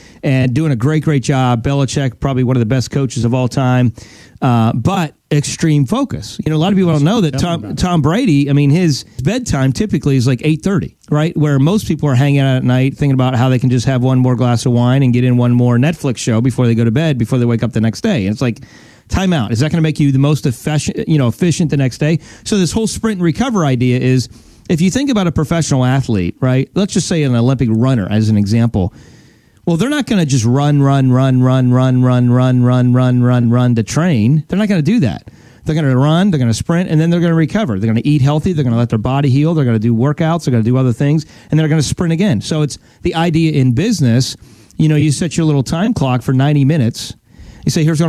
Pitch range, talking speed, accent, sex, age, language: 125-160 Hz, 265 wpm, American, male, 30-49, English